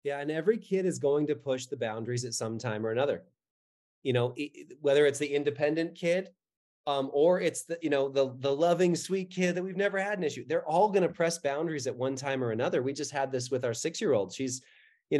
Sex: male